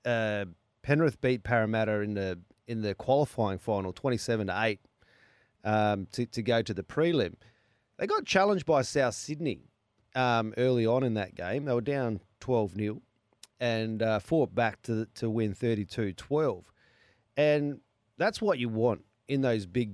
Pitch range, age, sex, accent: 105-130 Hz, 30-49, male, Australian